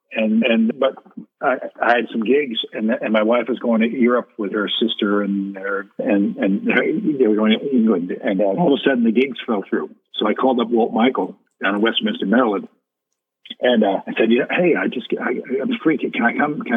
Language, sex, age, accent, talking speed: English, male, 50-69, American, 225 wpm